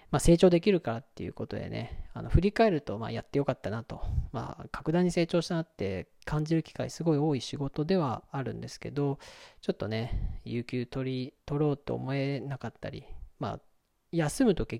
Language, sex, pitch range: Japanese, male, 115-155 Hz